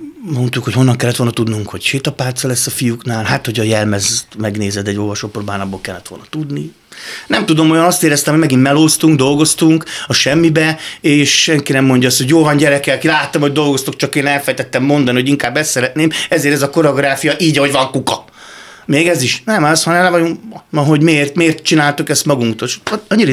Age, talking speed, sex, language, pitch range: 30-49, 200 wpm, male, Hungarian, 115-150 Hz